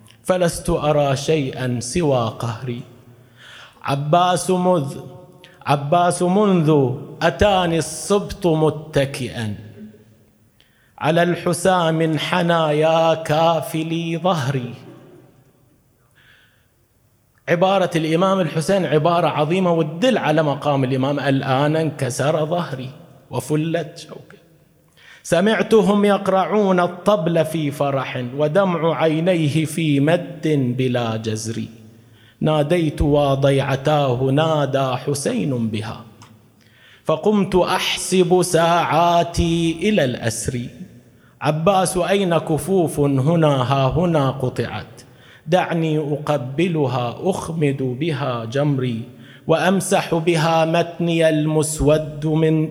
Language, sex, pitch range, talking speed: Arabic, male, 130-170 Hz, 80 wpm